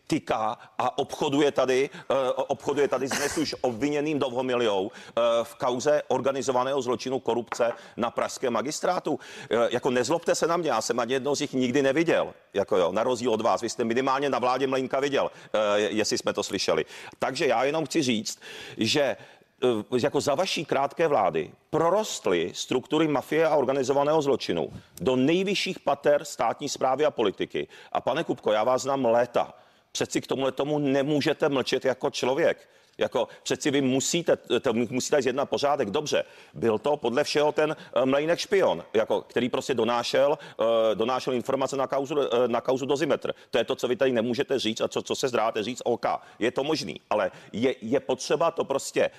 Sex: male